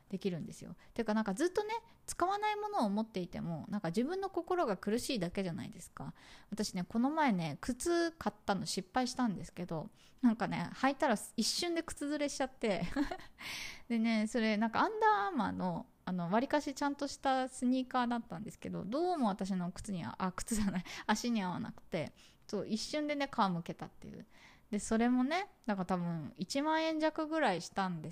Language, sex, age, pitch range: Japanese, female, 20-39, 195-270 Hz